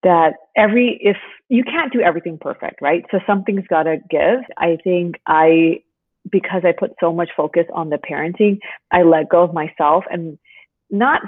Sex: female